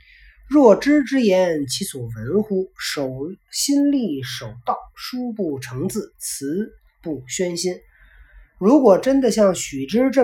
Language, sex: Chinese, male